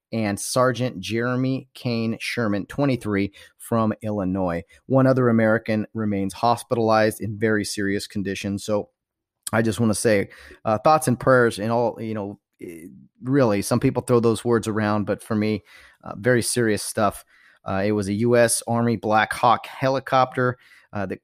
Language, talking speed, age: English, 160 wpm, 30-49